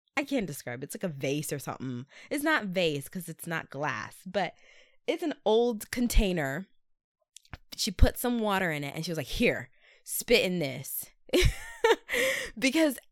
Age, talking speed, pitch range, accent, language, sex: 20-39, 165 wpm, 155-220 Hz, American, English, female